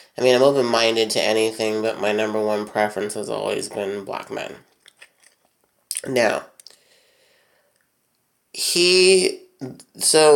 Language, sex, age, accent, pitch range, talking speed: English, male, 30-49, American, 110-135 Hz, 110 wpm